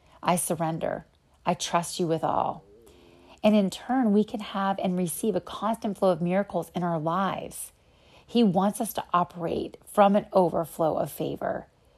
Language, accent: English, American